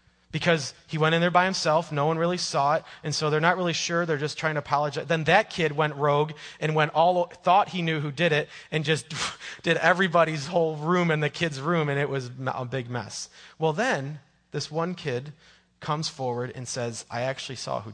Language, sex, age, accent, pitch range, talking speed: English, male, 30-49, American, 120-160 Hz, 220 wpm